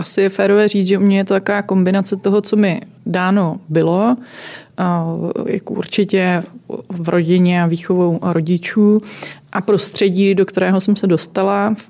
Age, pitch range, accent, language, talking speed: 20-39, 165-190 Hz, native, Czech, 150 wpm